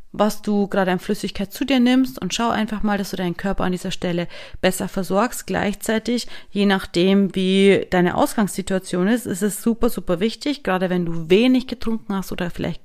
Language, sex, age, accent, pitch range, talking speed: German, female, 30-49, German, 180-205 Hz, 190 wpm